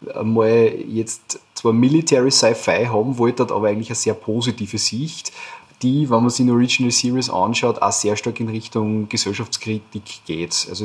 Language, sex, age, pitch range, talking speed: German, male, 30-49, 110-130 Hz, 165 wpm